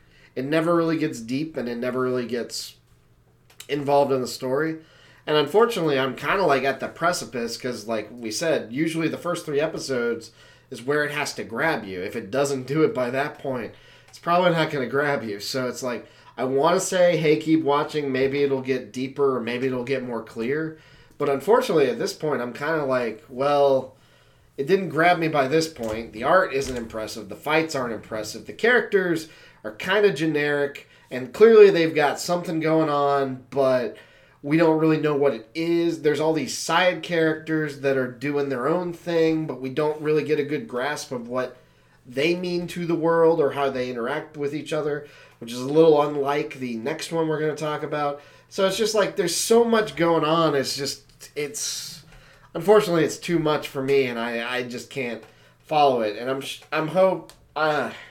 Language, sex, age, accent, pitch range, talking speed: English, male, 30-49, American, 130-160 Hz, 200 wpm